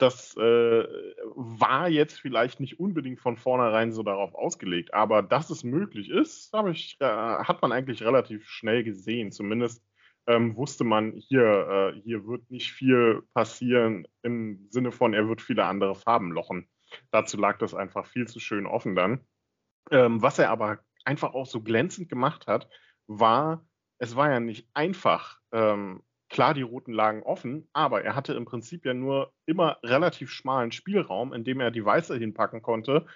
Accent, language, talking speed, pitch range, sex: German, German, 170 wpm, 110-130 Hz, male